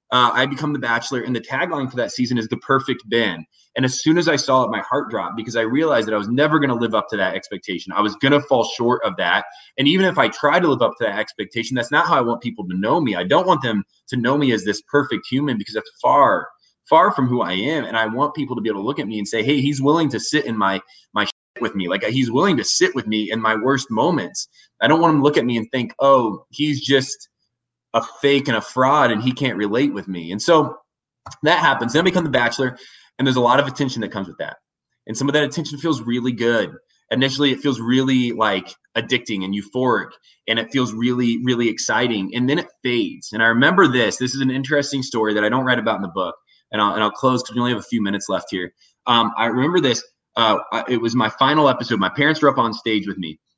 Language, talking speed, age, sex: English, 265 wpm, 20-39, male